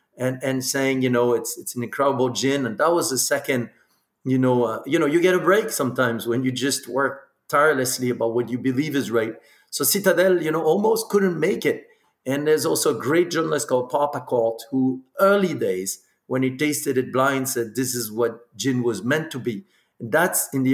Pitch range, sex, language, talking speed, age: 125-155 Hz, male, English, 210 wpm, 50-69